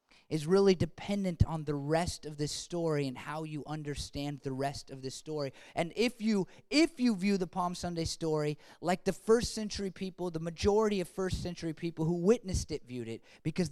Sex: male